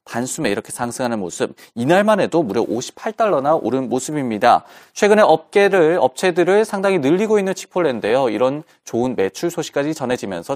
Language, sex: Korean, male